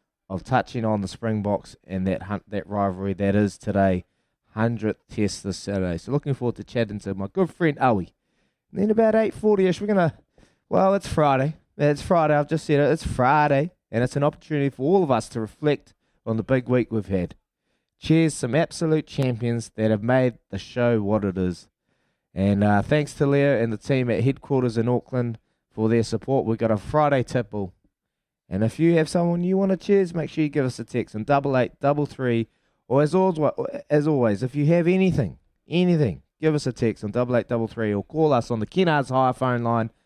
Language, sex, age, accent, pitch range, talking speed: English, male, 20-39, Australian, 105-150 Hz, 215 wpm